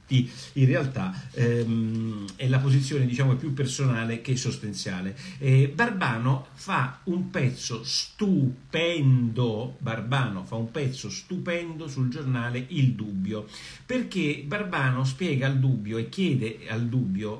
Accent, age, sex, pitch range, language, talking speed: native, 50-69, male, 125-200 Hz, Italian, 120 wpm